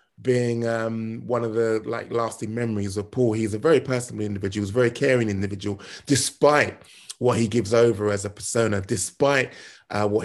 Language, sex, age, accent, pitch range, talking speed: English, male, 20-39, British, 105-135 Hz, 180 wpm